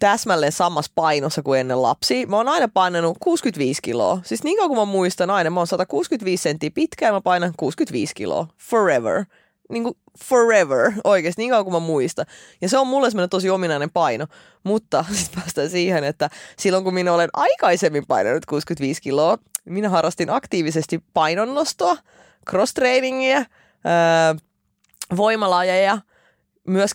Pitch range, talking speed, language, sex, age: 160-210 Hz, 145 wpm, Finnish, female, 20-39